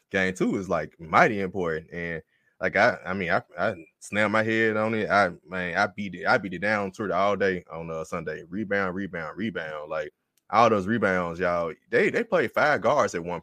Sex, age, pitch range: male, 20-39, 90-110 Hz